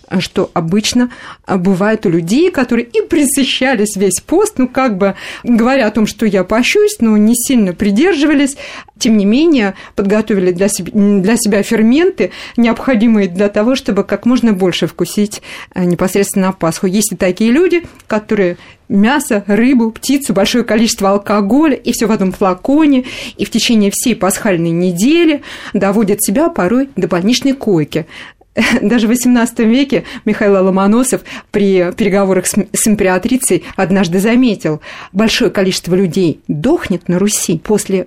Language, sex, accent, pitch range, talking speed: Russian, female, native, 190-245 Hz, 145 wpm